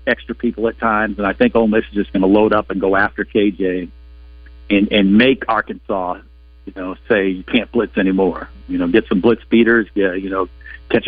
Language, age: English, 50-69